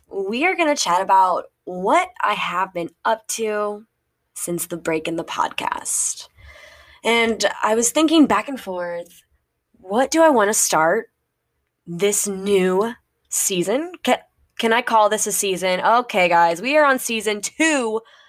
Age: 10-29